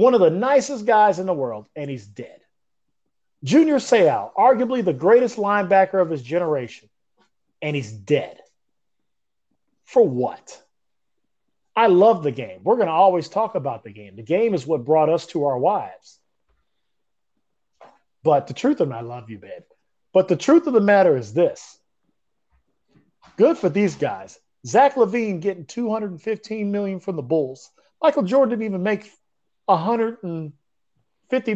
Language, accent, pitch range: English, American, 140-210 Hz